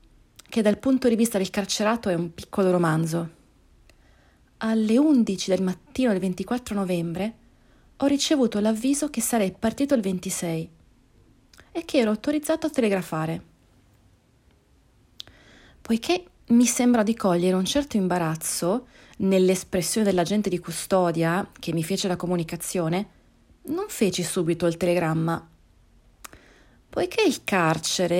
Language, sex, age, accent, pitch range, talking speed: Italian, female, 30-49, native, 170-230 Hz, 120 wpm